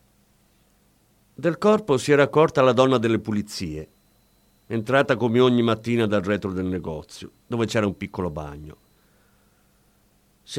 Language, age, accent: Italian, 50-69, native